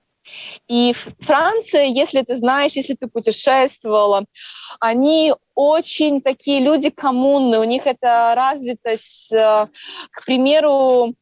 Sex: female